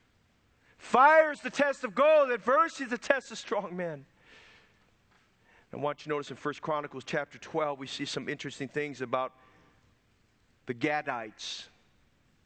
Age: 40-59